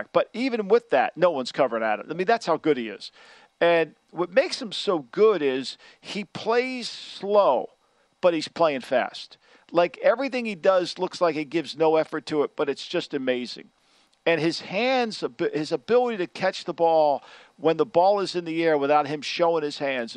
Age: 50-69